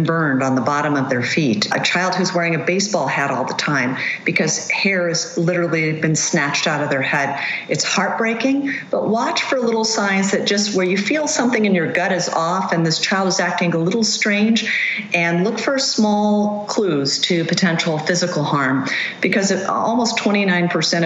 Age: 50-69